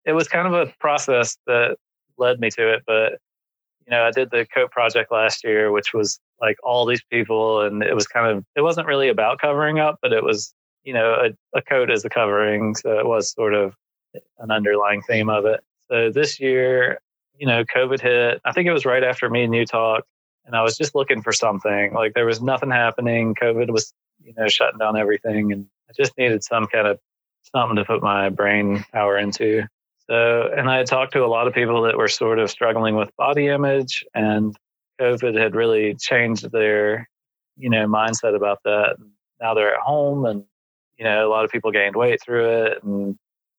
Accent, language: American, English